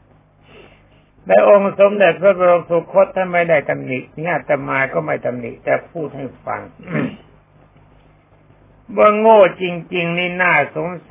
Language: Thai